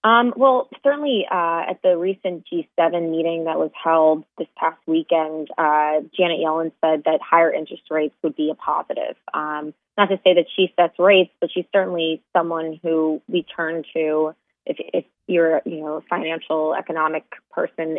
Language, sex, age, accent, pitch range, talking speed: English, female, 20-39, American, 160-190 Hz, 165 wpm